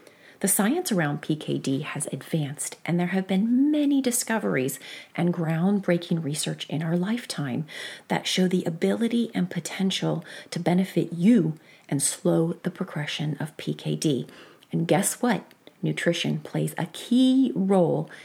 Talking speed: 135 wpm